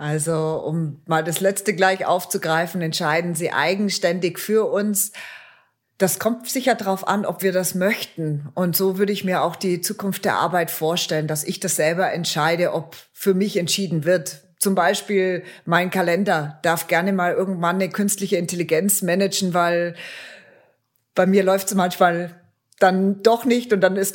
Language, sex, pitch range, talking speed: German, female, 175-205 Hz, 165 wpm